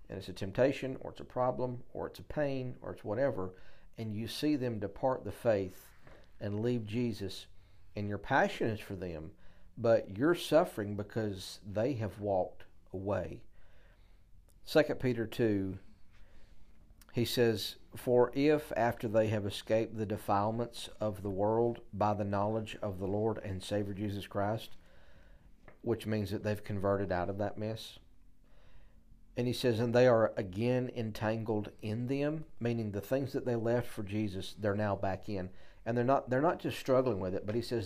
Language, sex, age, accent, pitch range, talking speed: English, male, 50-69, American, 100-120 Hz, 170 wpm